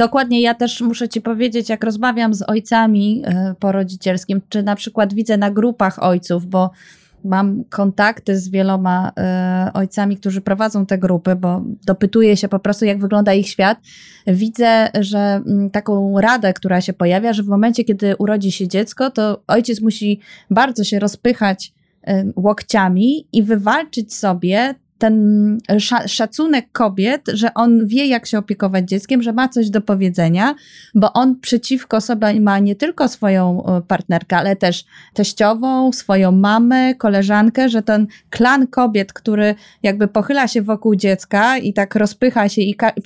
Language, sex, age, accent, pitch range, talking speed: Polish, female, 20-39, native, 195-230 Hz, 150 wpm